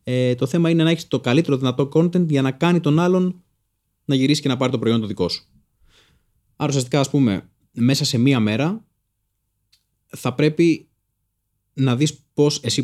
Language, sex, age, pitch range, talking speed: Greek, male, 20-39, 105-145 Hz, 180 wpm